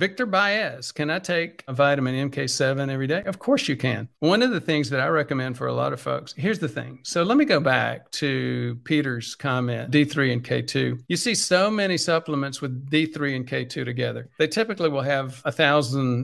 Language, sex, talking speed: English, male, 205 wpm